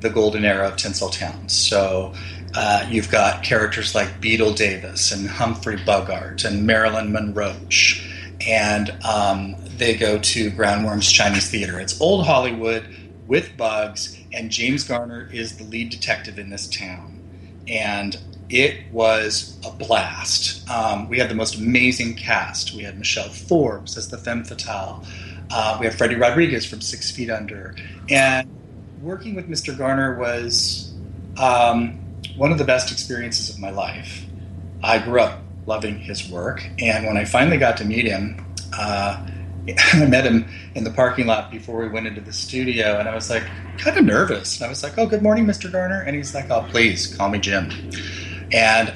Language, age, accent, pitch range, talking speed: English, 30-49, American, 95-115 Hz, 170 wpm